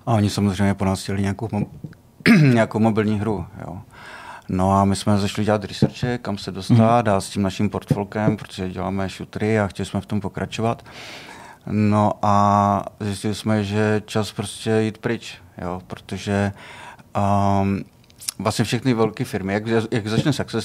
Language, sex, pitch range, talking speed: Czech, male, 95-110 Hz, 160 wpm